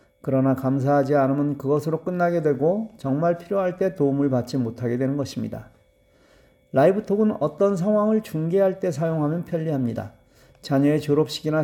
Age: 40-59